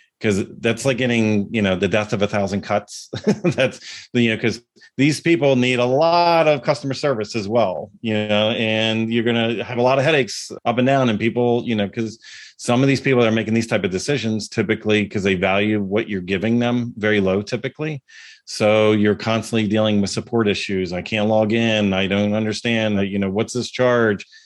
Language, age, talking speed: English, 40-59, 210 wpm